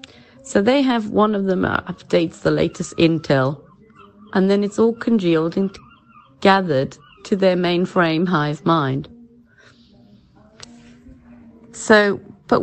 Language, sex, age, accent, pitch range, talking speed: English, female, 40-59, British, 140-225 Hz, 115 wpm